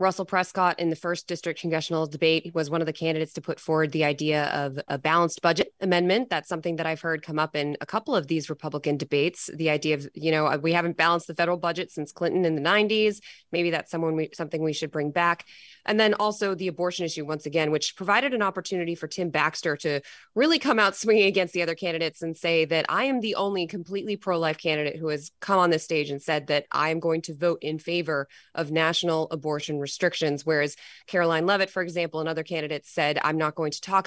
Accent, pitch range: American, 155-185 Hz